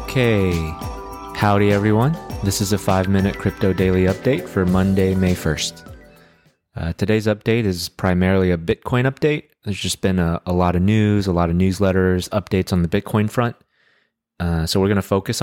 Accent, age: American, 30-49